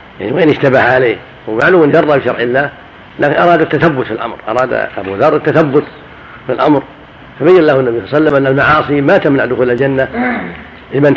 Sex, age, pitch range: male, 50-69, 125-165 Hz